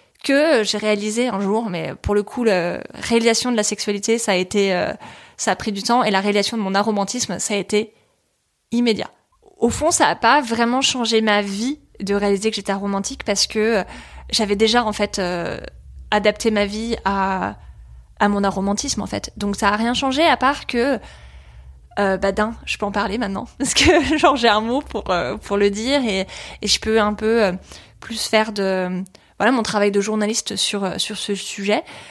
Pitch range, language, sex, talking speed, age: 200-230 Hz, French, female, 195 wpm, 20-39